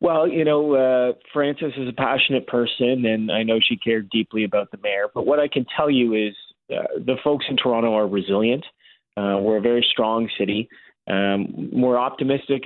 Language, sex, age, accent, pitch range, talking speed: English, male, 30-49, American, 100-115 Hz, 195 wpm